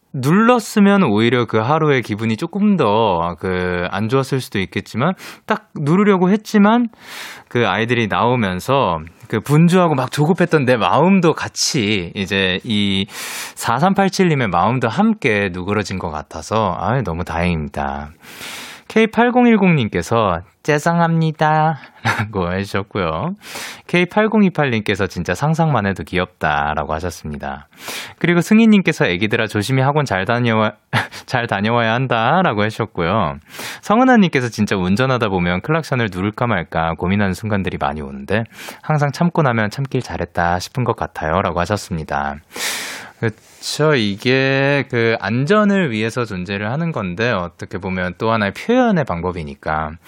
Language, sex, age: Korean, male, 20-39